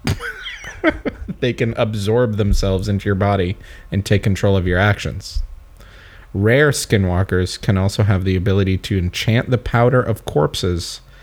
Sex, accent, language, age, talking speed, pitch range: male, American, English, 30-49, 140 wpm, 95-120 Hz